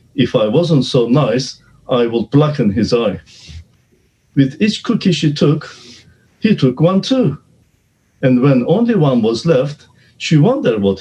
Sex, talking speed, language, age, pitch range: male, 155 wpm, English, 50-69, 120-175 Hz